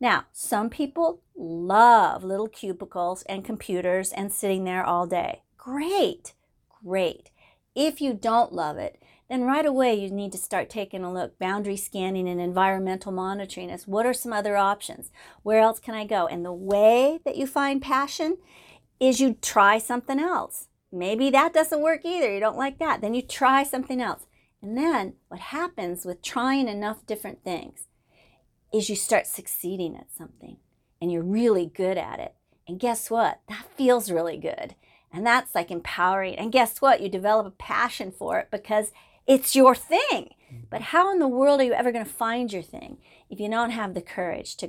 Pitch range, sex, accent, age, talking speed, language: 190-260 Hz, female, American, 50-69, 185 wpm, English